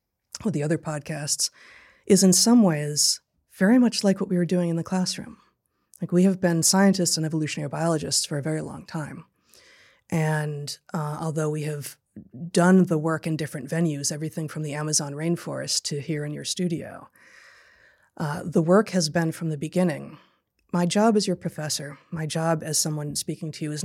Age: 30-49